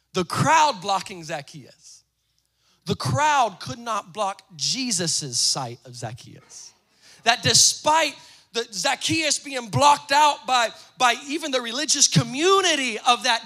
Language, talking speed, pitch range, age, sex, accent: English, 120 wpm, 190-320 Hz, 20-39, male, American